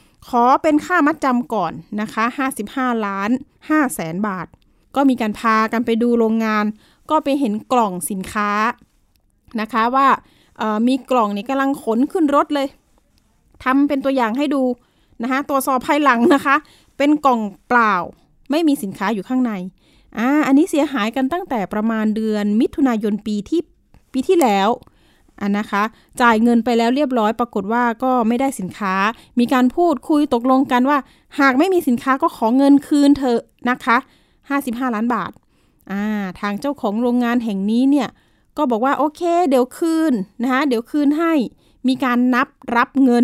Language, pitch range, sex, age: Thai, 220-275 Hz, female, 20-39